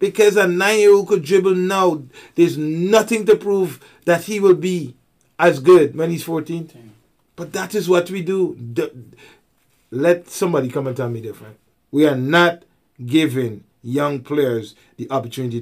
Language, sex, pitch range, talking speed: English, male, 130-175 Hz, 155 wpm